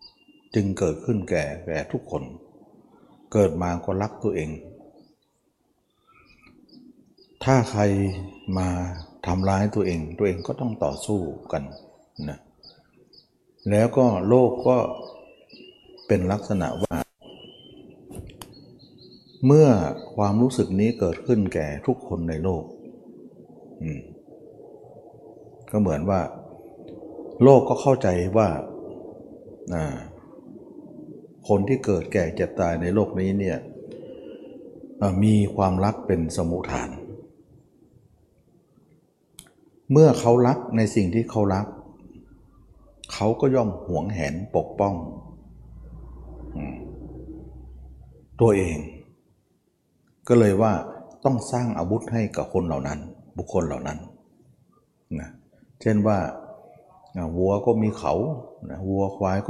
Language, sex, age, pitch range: Thai, male, 60-79, 85-110 Hz